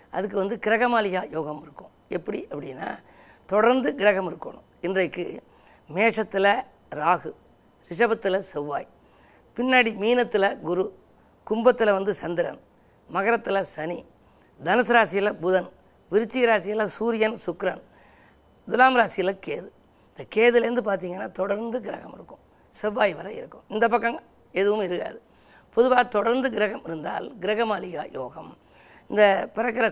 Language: Tamil